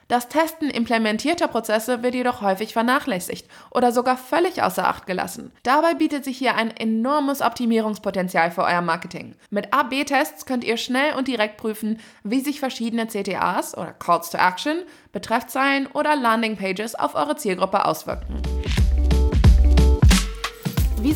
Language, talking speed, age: German, 140 wpm, 20-39